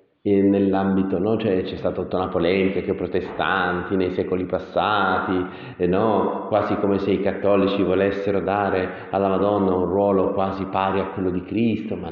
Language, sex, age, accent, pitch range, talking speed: Italian, male, 40-59, native, 95-110 Hz, 165 wpm